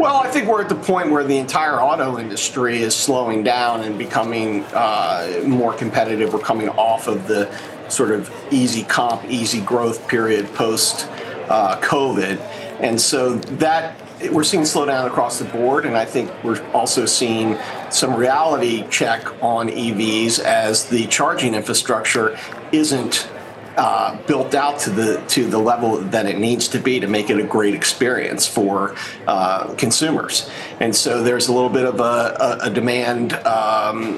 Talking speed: 165 wpm